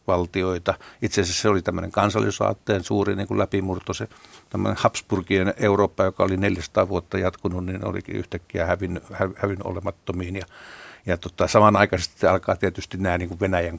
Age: 60-79